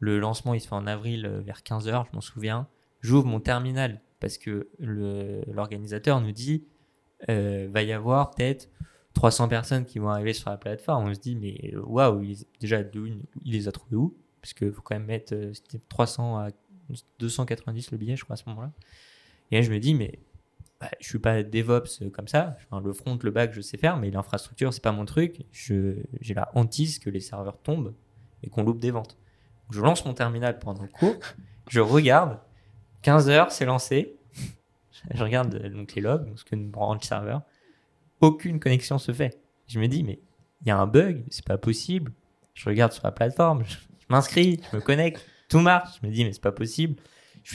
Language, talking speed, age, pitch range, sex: French, 205 wpm, 20-39, 105-140 Hz, male